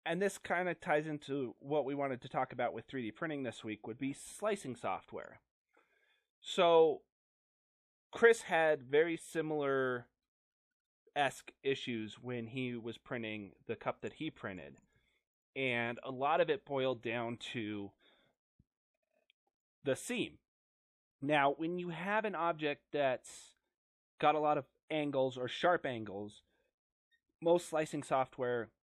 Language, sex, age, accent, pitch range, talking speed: English, male, 30-49, American, 115-150 Hz, 135 wpm